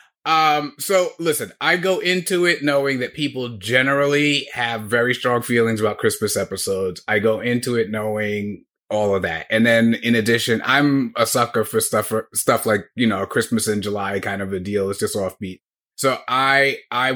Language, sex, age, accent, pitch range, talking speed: English, male, 30-49, American, 105-125 Hz, 180 wpm